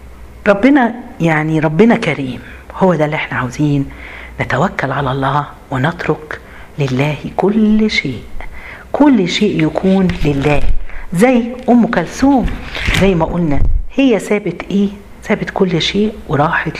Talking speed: 120 wpm